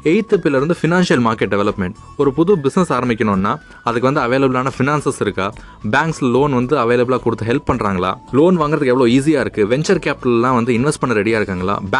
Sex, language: male, Tamil